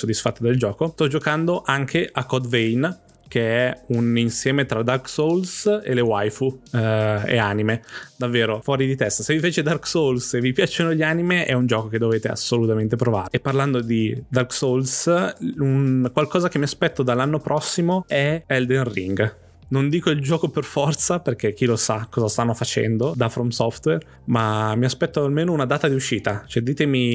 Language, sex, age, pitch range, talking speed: Italian, male, 20-39, 115-140 Hz, 185 wpm